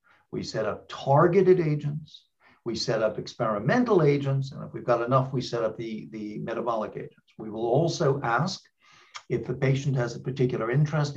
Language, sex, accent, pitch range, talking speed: English, male, American, 125-165 Hz, 175 wpm